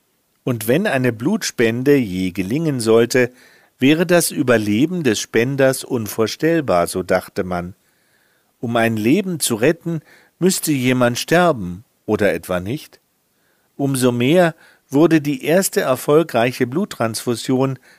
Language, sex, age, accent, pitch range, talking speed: German, male, 50-69, German, 110-150 Hz, 115 wpm